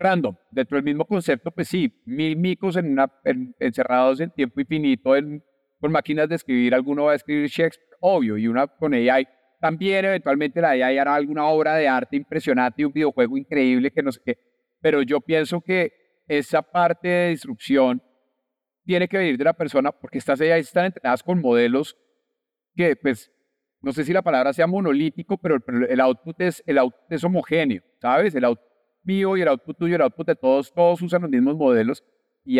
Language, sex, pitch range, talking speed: Spanish, male, 130-165 Hz, 195 wpm